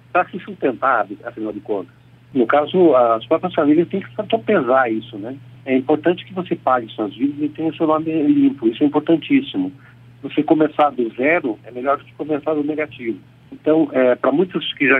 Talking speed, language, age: 195 wpm, Portuguese, 60-79